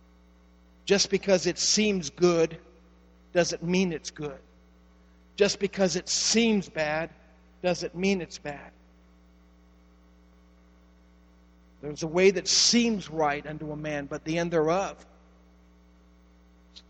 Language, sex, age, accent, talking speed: English, male, 50-69, American, 115 wpm